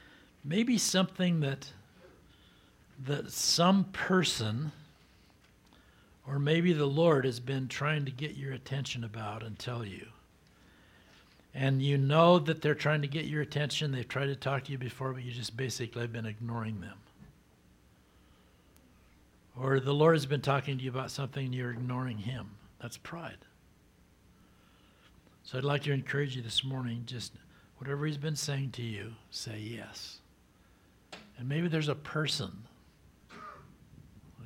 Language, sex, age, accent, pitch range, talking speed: English, male, 60-79, American, 110-140 Hz, 150 wpm